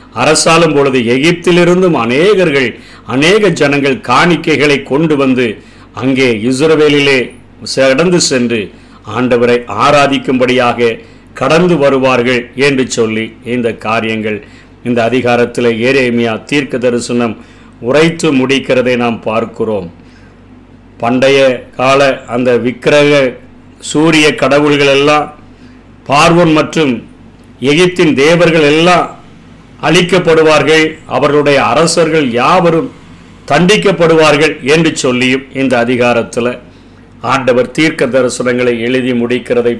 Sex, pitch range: male, 120-150 Hz